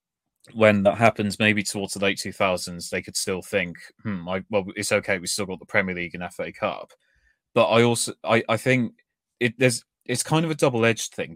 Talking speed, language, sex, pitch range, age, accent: 210 wpm, English, male, 95-110 Hz, 20-39, British